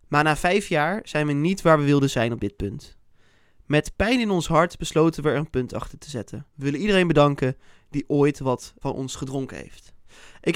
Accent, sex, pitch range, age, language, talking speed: Dutch, male, 140-195 Hz, 20-39, Dutch, 220 wpm